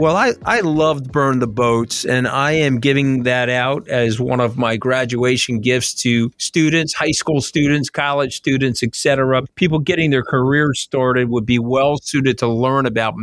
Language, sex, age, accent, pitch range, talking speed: English, male, 50-69, American, 115-140 Hz, 180 wpm